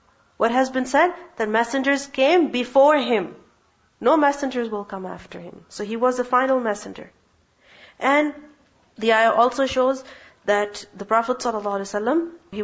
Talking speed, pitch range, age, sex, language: 140 wpm, 205-250 Hz, 40-59, female, English